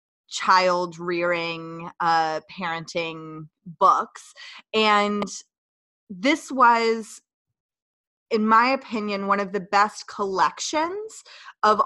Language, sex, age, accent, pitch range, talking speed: English, female, 20-39, American, 170-225 Hz, 85 wpm